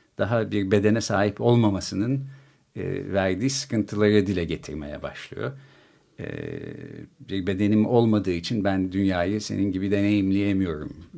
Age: 50-69